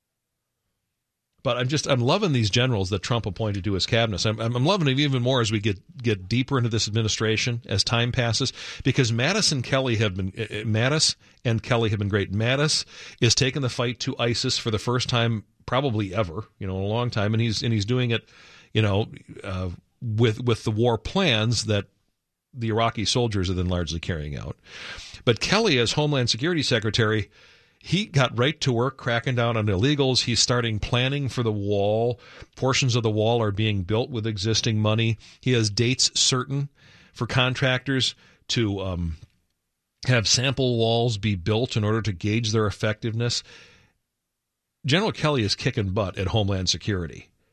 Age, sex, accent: 50-69, male, American